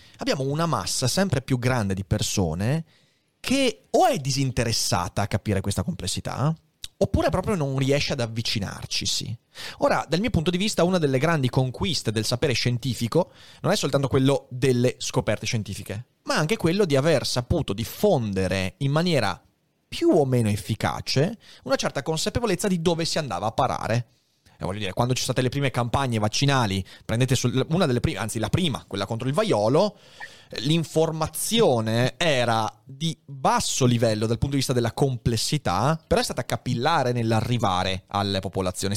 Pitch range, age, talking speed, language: 110-145 Hz, 30-49, 160 wpm, Italian